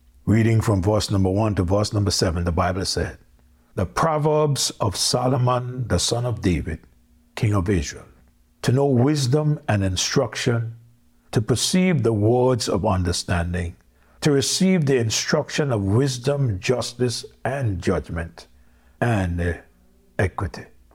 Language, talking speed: English, 130 wpm